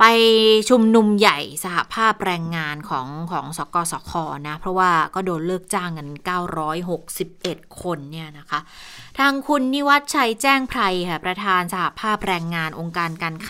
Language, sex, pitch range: Thai, female, 170-215 Hz